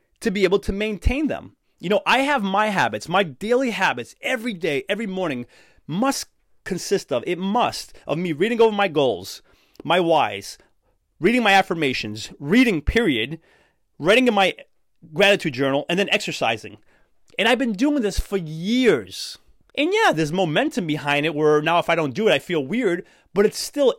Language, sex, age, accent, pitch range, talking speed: English, male, 30-49, American, 160-220 Hz, 180 wpm